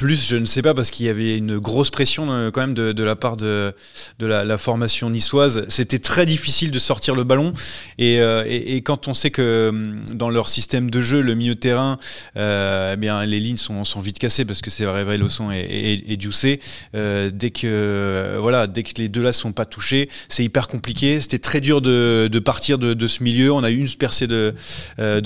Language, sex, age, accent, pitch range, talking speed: French, male, 20-39, French, 110-135 Hz, 240 wpm